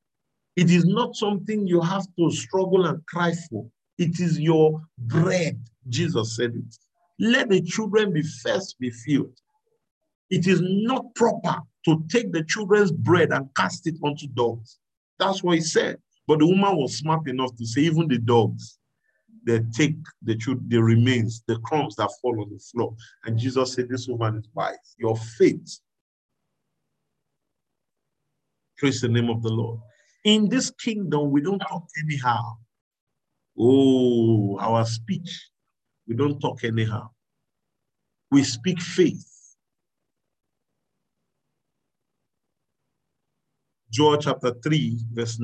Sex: male